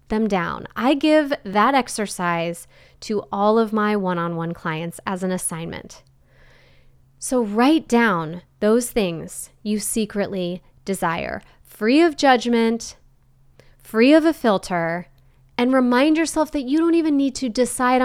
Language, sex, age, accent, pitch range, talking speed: English, female, 20-39, American, 170-255 Hz, 135 wpm